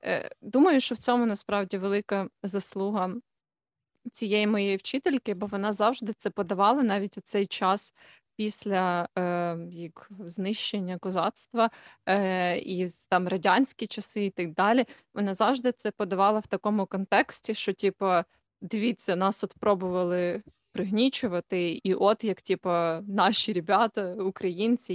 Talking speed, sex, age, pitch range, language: 125 wpm, female, 20-39, 180-210 Hz, Ukrainian